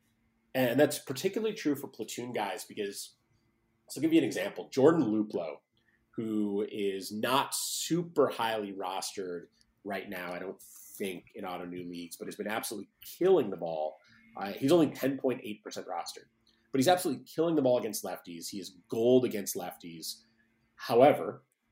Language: English